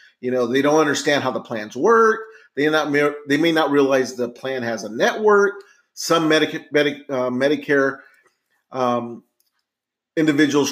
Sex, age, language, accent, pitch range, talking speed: male, 30-49, English, American, 130-170 Hz, 135 wpm